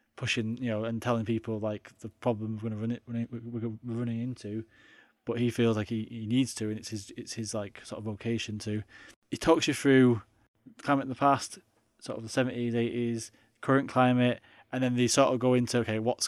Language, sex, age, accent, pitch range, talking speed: English, male, 20-39, British, 110-130 Hz, 215 wpm